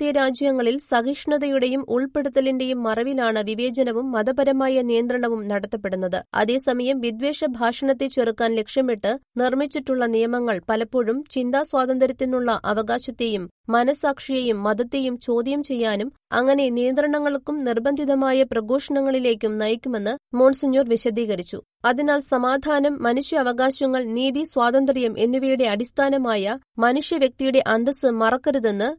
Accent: native